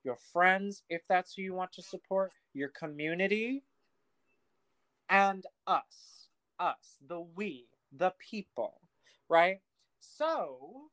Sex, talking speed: male, 110 wpm